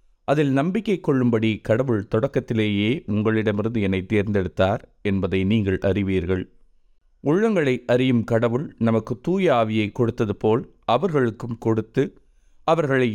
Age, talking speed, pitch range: 30-49, 95 wpm, 100-120 Hz